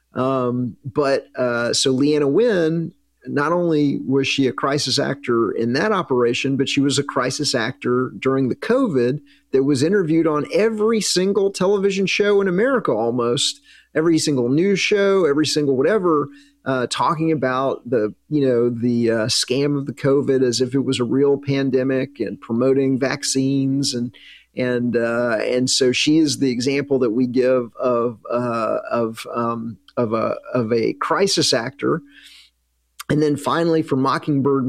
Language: English